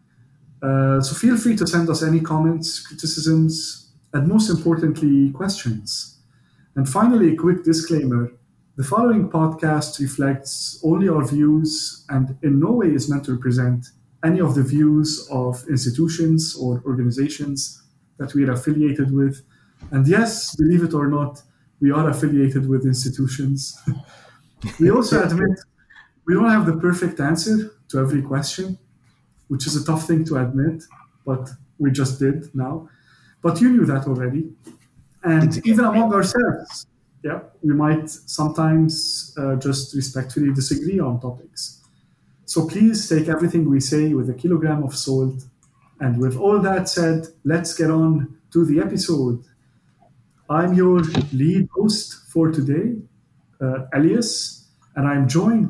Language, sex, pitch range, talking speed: English, male, 135-165 Hz, 145 wpm